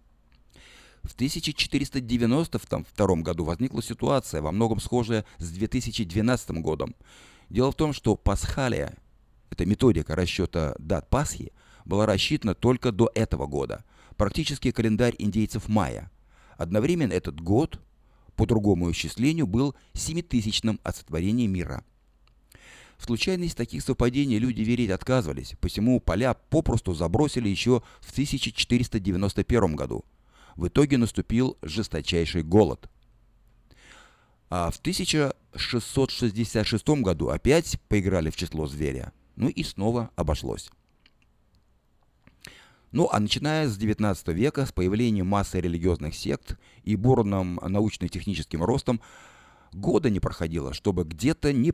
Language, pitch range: Russian, 85-120 Hz